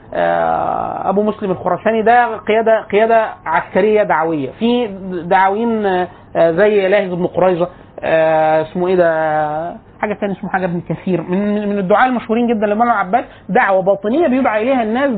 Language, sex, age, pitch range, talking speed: Arabic, male, 30-49, 185-245 Hz, 135 wpm